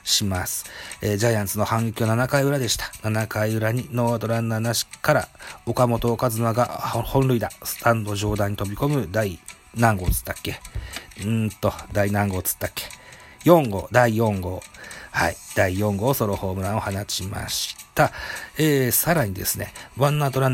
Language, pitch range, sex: Japanese, 95-125 Hz, male